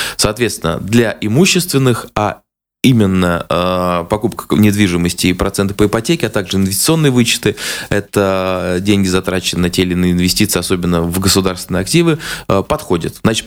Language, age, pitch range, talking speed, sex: Russian, 20-39, 95-120 Hz, 140 wpm, male